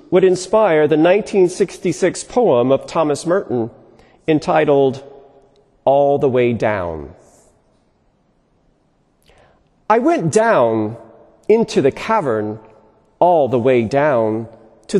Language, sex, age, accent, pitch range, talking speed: English, male, 40-59, American, 115-185 Hz, 95 wpm